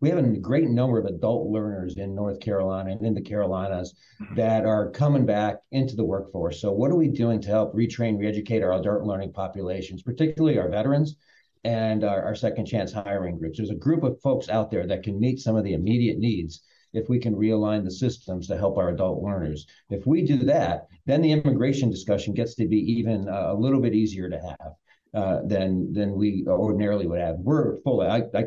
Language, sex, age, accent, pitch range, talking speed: English, male, 50-69, American, 95-115 Hz, 215 wpm